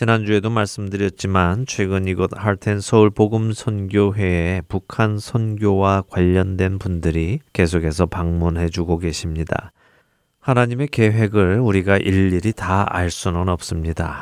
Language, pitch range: Korean, 90-110 Hz